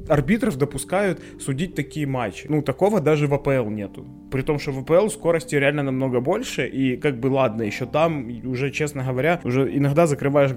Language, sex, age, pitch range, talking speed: Ukrainian, male, 20-39, 130-160 Hz, 180 wpm